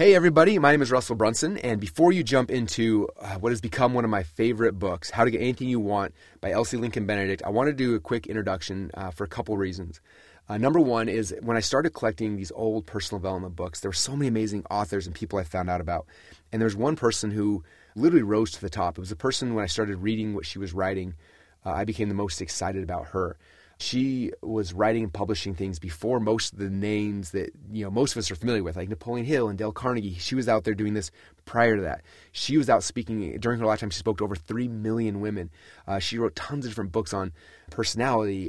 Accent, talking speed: American, 245 wpm